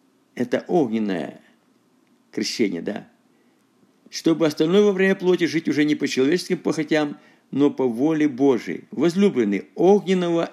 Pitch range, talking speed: 140-205 Hz, 120 wpm